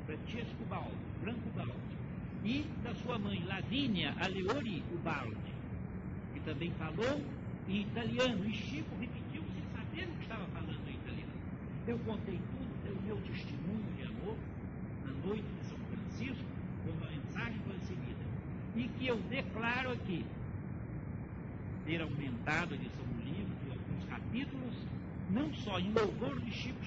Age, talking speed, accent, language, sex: 60-79, 145 wpm, Brazilian, Portuguese, male